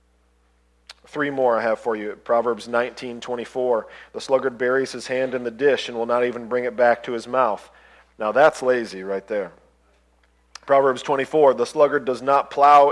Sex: male